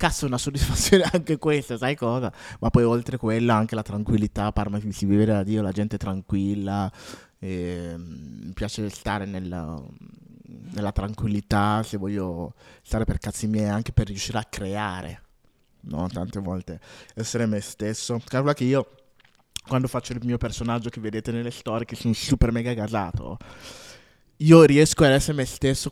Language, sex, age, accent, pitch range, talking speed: Italian, male, 20-39, native, 100-125 Hz, 170 wpm